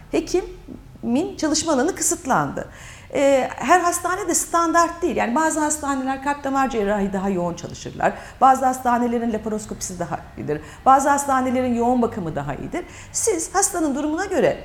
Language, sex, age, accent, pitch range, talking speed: Turkish, female, 50-69, native, 180-300 Hz, 135 wpm